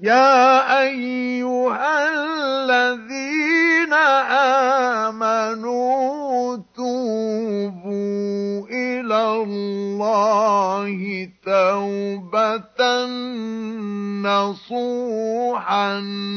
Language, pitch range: Arabic, 200-250 Hz